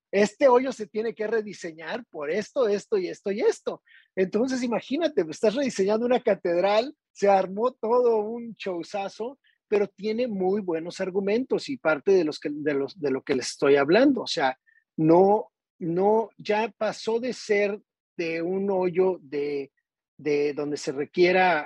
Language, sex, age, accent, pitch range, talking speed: Spanish, male, 40-59, Mexican, 170-220 Hz, 160 wpm